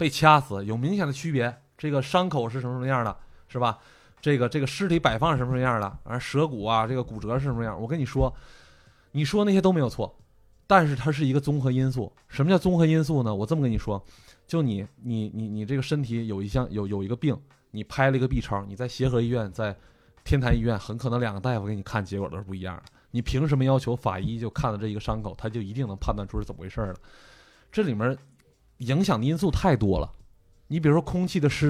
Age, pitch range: 20-39, 110-140 Hz